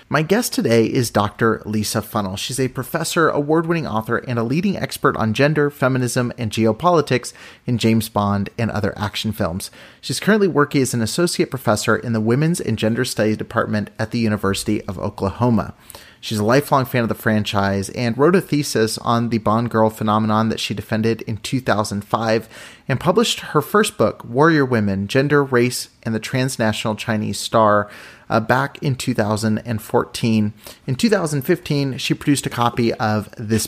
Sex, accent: male, American